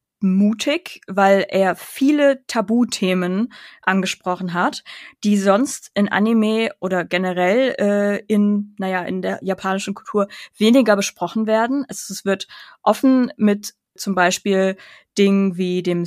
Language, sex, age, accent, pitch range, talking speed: German, female, 20-39, German, 185-215 Hz, 125 wpm